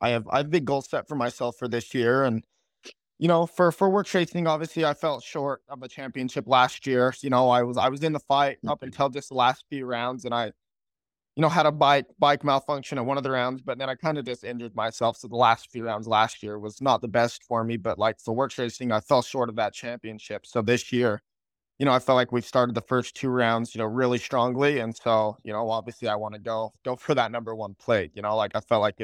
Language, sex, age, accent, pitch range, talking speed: English, male, 20-39, American, 115-135 Hz, 265 wpm